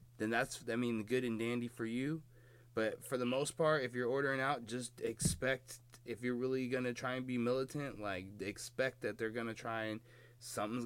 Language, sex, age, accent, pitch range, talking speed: English, male, 20-39, American, 115-135 Hz, 210 wpm